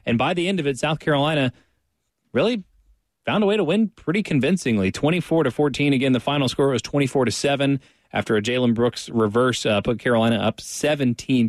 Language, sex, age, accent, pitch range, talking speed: English, male, 30-49, American, 115-140 Hz, 185 wpm